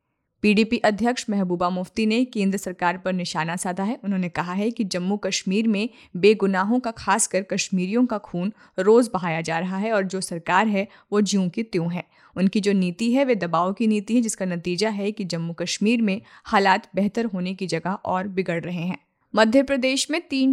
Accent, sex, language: native, female, Hindi